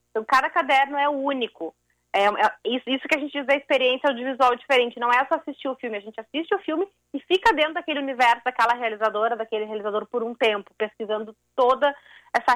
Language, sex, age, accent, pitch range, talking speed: Portuguese, female, 30-49, Brazilian, 220-270 Hz, 205 wpm